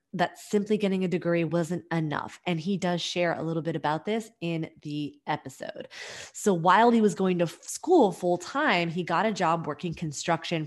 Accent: American